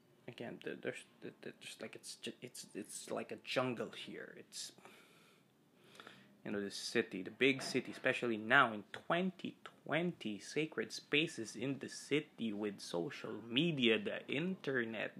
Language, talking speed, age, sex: Filipino, 140 wpm, 20-39, male